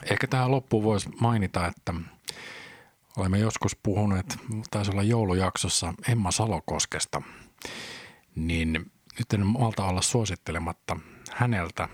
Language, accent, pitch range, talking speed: Finnish, native, 90-110 Hz, 105 wpm